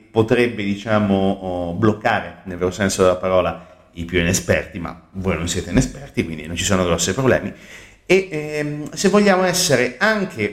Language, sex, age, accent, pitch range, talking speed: Italian, male, 30-49, native, 95-130 Hz, 160 wpm